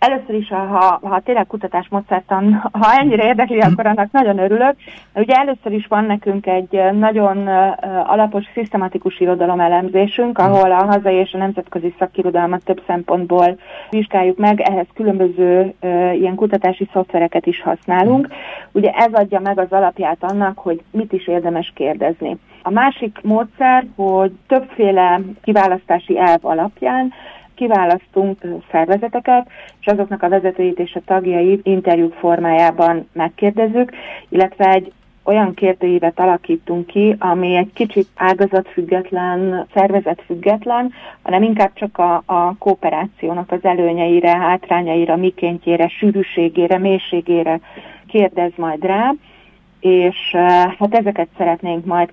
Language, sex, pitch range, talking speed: Hungarian, female, 180-205 Hz, 120 wpm